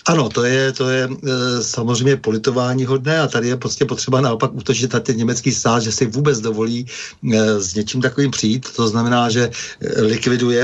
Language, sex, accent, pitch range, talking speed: Czech, male, native, 110-130 Hz, 170 wpm